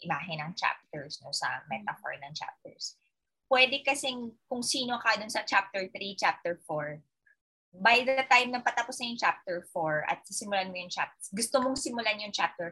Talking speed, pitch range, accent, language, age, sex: 175 wpm, 180-255 Hz, native, Filipino, 20-39, female